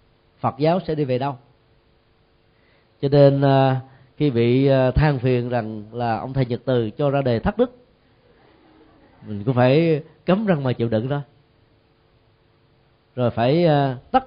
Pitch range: 115-150 Hz